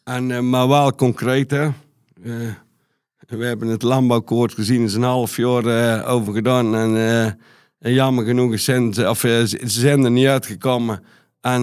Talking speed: 165 wpm